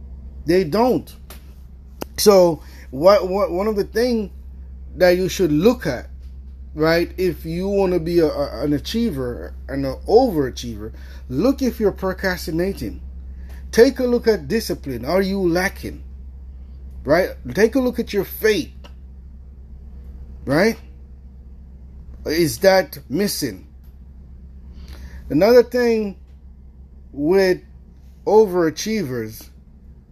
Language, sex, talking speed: English, male, 105 wpm